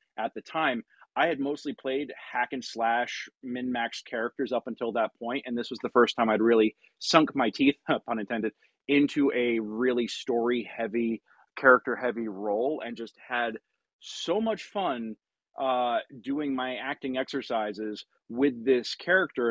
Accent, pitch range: American, 110-130 Hz